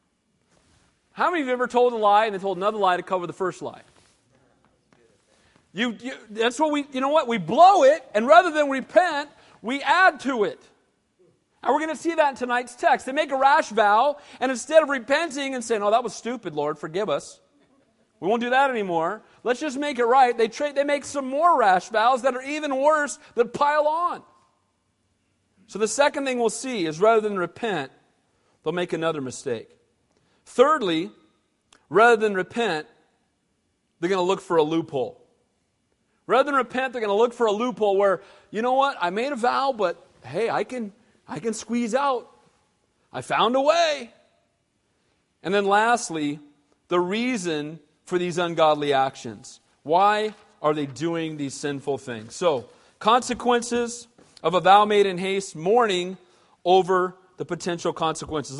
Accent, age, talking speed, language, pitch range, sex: American, 40-59, 175 wpm, English, 175-270 Hz, male